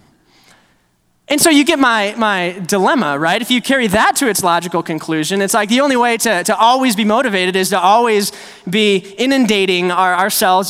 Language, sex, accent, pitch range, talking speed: English, male, American, 175-240 Hz, 180 wpm